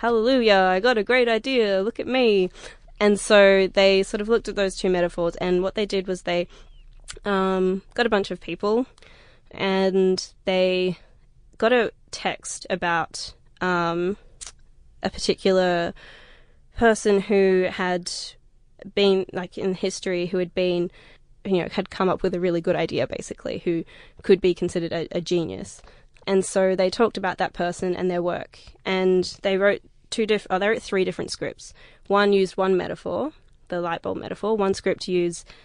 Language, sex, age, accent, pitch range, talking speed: English, female, 20-39, Australian, 175-195 Hz, 170 wpm